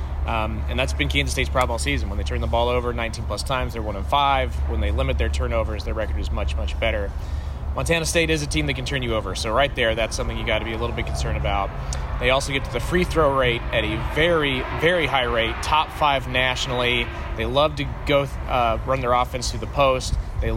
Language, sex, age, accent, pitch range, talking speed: English, male, 30-49, American, 100-130 Hz, 240 wpm